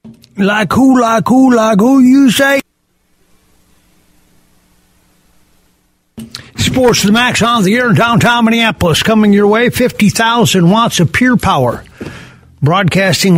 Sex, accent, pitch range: male, American, 125-180 Hz